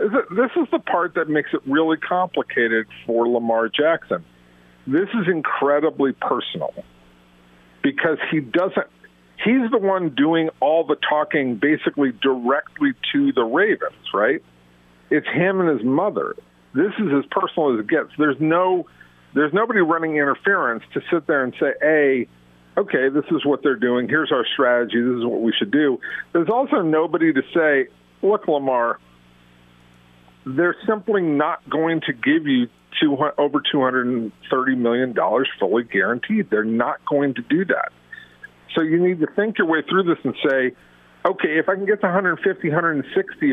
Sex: male